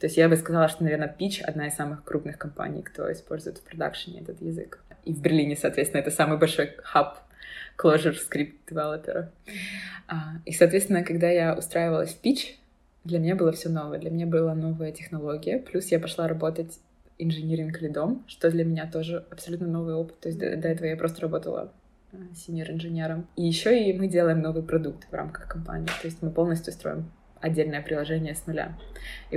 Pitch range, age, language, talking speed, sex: 155-175 Hz, 20-39, Russian, 180 wpm, female